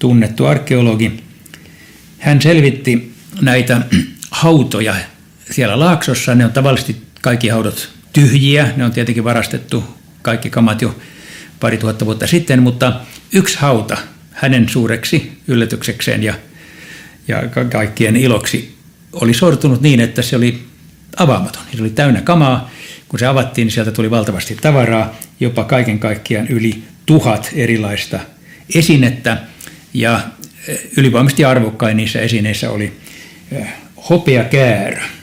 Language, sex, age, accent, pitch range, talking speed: Finnish, male, 60-79, native, 110-140 Hz, 115 wpm